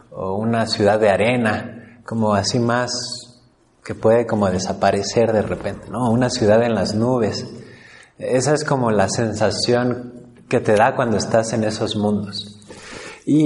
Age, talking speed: 30-49, 150 wpm